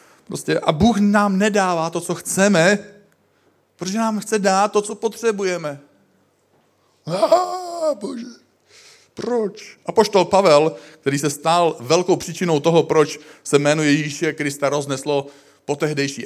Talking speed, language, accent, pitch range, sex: 125 wpm, Czech, native, 115-185 Hz, male